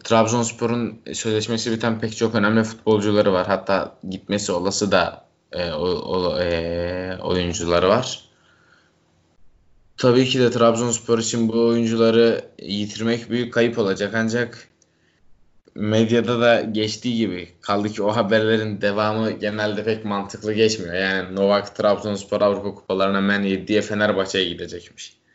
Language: Turkish